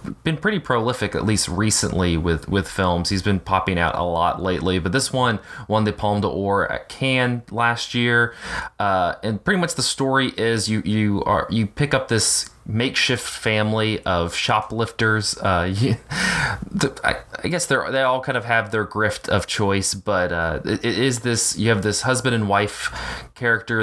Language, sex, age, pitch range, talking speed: English, male, 20-39, 90-110 Hz, 180 wpm